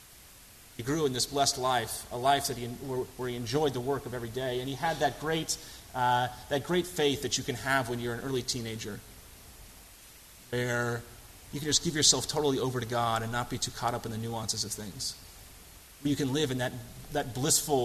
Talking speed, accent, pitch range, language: 215 wpm, American, 100-130 Hz, English